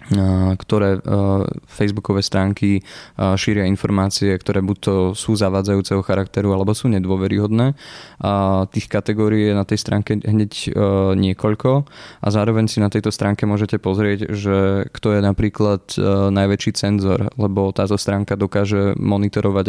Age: 20-39